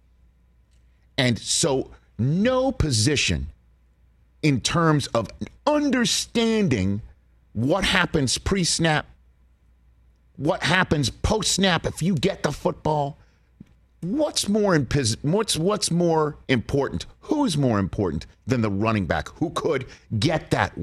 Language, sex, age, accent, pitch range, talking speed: English, male, 50-69, American, 95-160 Hz, 110 wpm